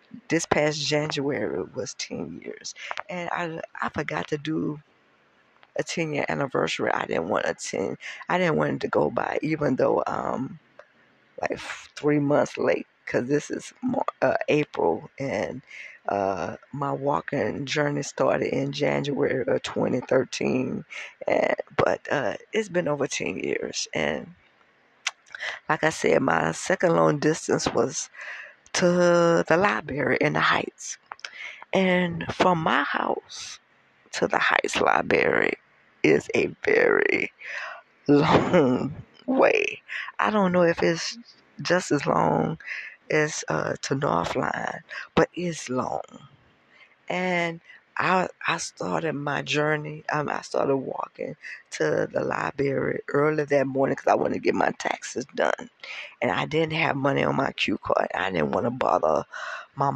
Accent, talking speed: American, 140 wpm